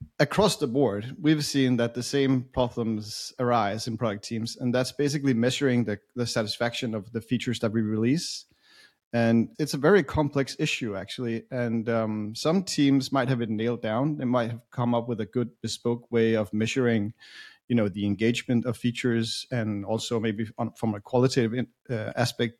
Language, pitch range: English, 115-130 Hz